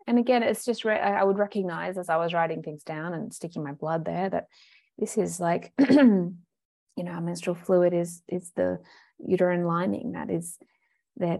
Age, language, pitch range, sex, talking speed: 20-39, English, 175-210 Hz, female, 190 wpm